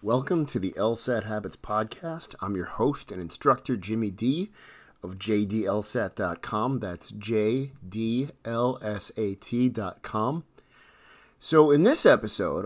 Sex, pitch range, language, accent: male, 95-125 Hz, English, American